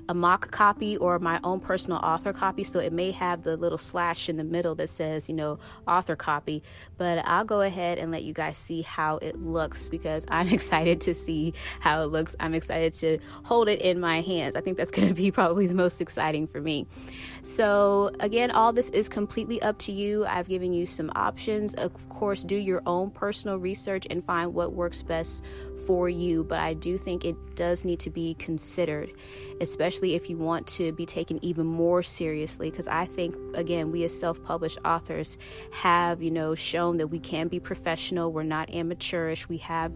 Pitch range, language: 160-180 Hz, English